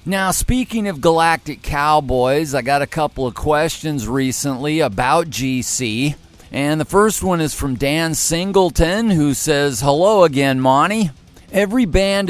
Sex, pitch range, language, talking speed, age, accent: male, 130-170 Hz, English, 140 wpm, 50-69, American